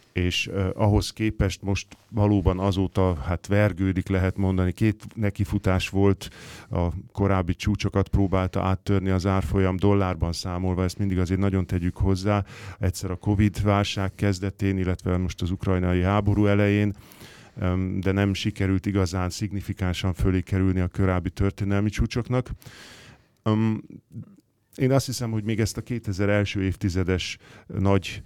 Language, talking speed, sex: Hungarian, 125 wpm, male